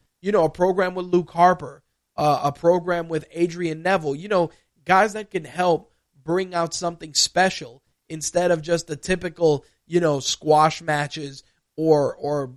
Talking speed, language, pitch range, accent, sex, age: 160 wpm, English, 150-180 Hz, American, male, 20-39